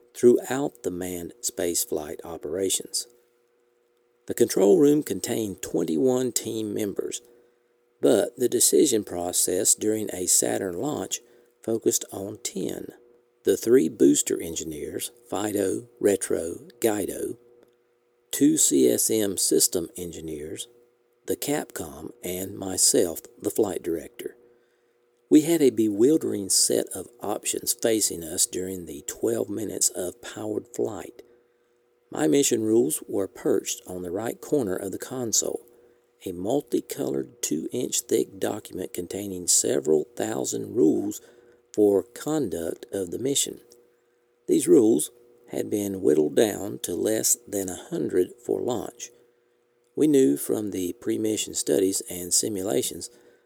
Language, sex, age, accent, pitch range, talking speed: English, male, 50-69, American, 105-120 Hz, 115 wpm